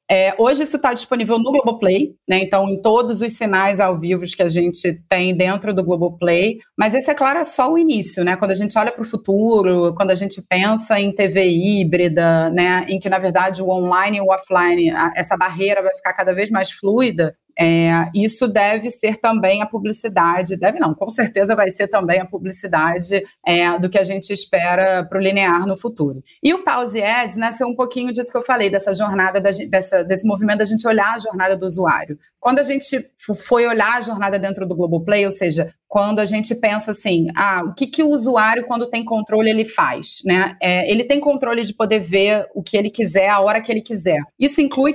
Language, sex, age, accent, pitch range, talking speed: Portuguese, female, 30-49, Brazilian, 190-245 Hz, 210 wpm